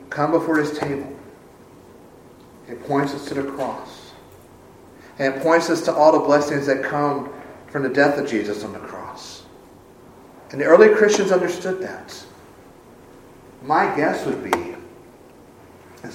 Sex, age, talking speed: male, 40-59, 145 wpm